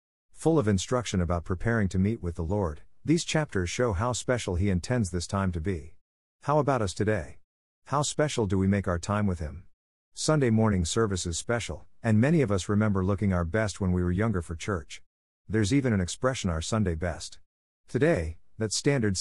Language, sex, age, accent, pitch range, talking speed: English, male, 50-69, American, 90-115 Hz, 195 wpm